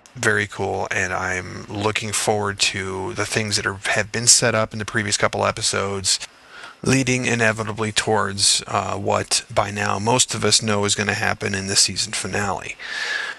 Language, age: English, 30-49